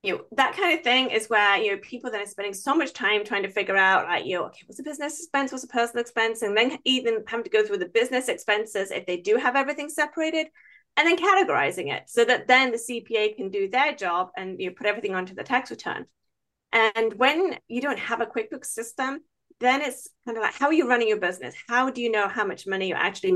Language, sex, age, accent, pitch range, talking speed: English, female, 30-49, British, 190-280 Hz, 255 wpm